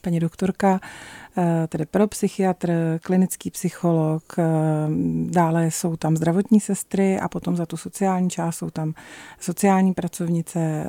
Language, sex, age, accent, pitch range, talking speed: Czech, female, 40-59, native, 170-190 Hz, 120 wpm